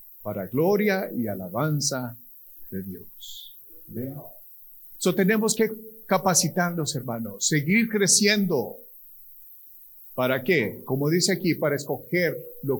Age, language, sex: 50-69, Spanish, male